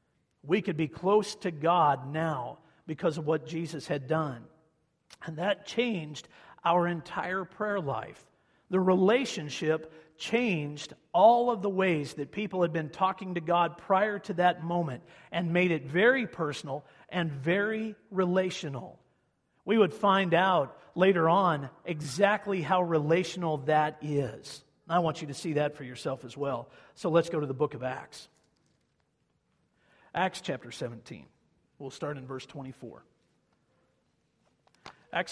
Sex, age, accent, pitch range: male, 50-69, American, 150-190 Hz